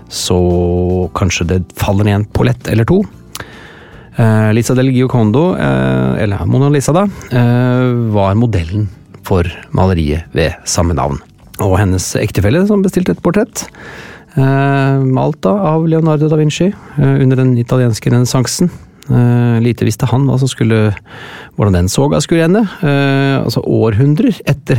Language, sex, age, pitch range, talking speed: English, male, 30-49, 95-125 Hz, 145 wpm